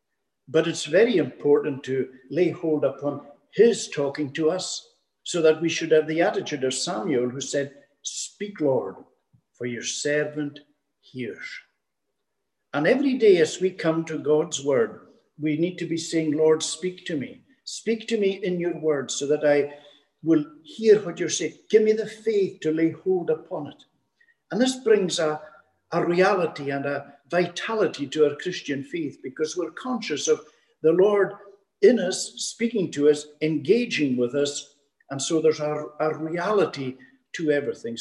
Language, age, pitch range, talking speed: English, 60-79, 140-195 Hz, 165 wpm